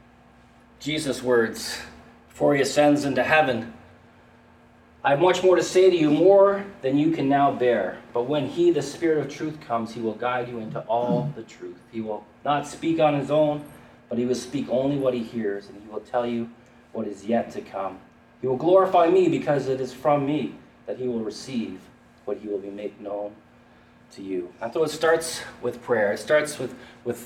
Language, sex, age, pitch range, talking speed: English, male, 30-49, 115-145 Hz, 205 wpm